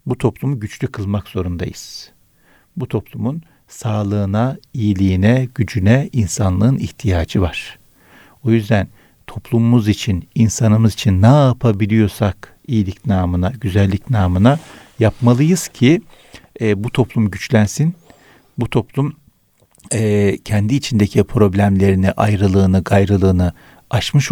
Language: Turkish